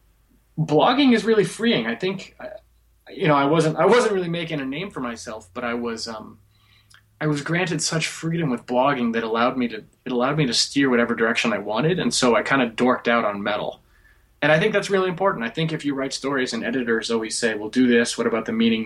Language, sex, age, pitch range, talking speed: English, male, 20-39, 115-155 Hz, 240 wpm